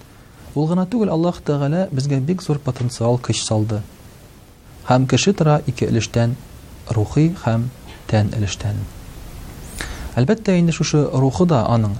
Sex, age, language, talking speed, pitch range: male, 40-59, Russian, 130 wpm, 105-145 Hz